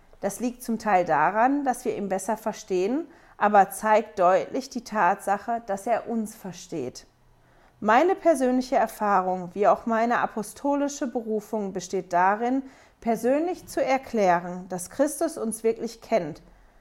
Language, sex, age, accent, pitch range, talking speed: German, female, 40-59, German, 215-275 Hz, 130 wpm